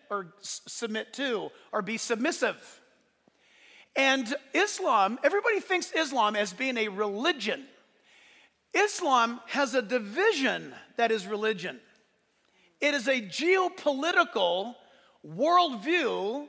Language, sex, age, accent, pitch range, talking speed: English, male, 50-69, American, 220-285 Hz, 100 wpm